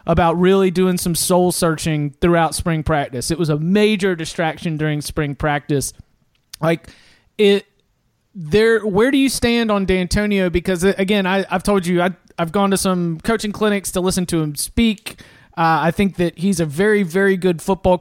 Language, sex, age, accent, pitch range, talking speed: English, male, 30-49, American, 165-200 Hz, 180 wpm